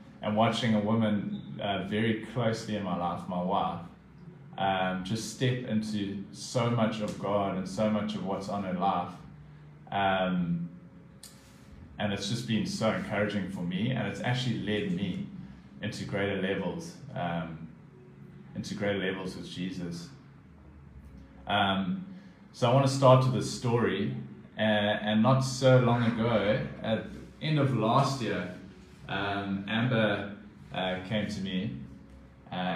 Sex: male